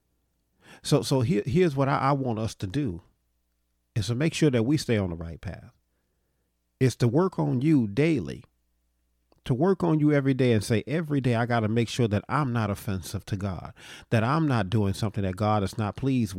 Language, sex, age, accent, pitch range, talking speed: English, male, 40-59, American, 95-125 Hz, 215 wpm